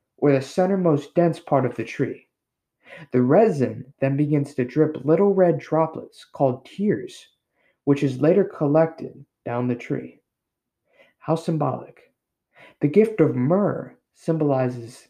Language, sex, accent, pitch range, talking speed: English, male, American, 130-175 Hz, 135 wpm